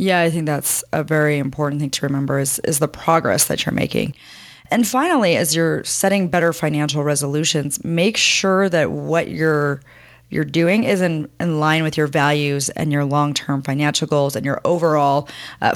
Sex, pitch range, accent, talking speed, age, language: female, 145-180 Hz, American, 185 wpm, 30-49, English